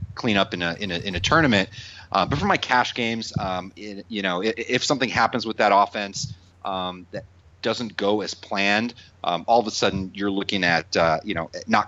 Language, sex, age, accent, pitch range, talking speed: English, male, 30-49, American, 90-110 Hz, 220 wpm